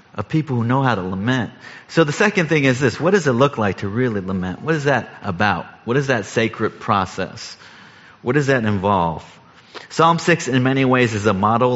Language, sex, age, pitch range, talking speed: English, male, 30-49, 105-140 Hz, 215 wpm